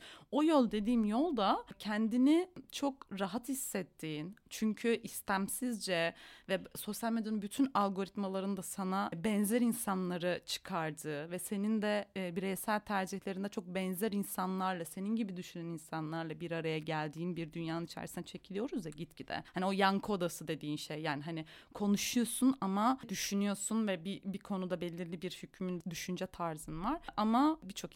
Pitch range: 170-230 Hz